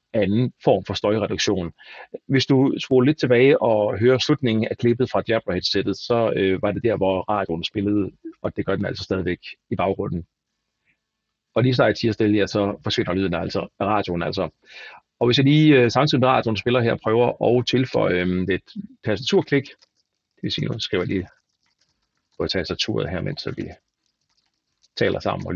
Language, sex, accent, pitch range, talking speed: Danish, male, native, 100-125 Hz, 190 wpm